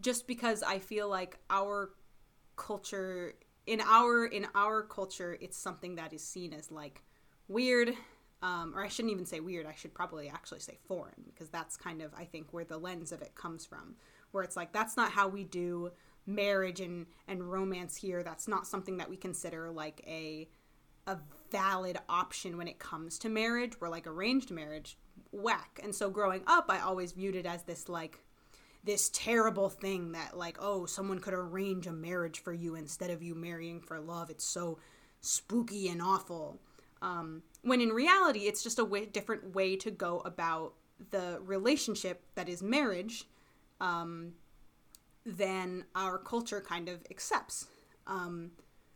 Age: 20-39